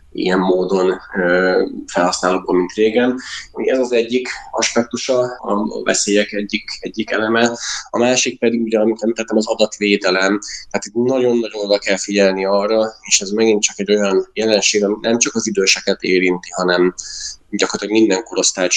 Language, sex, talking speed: Hungarian, male, 145 wpm